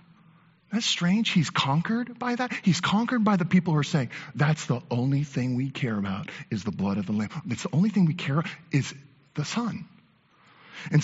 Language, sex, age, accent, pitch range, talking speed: English, male, 40-59, American, 130-175 Hz, 205 wpm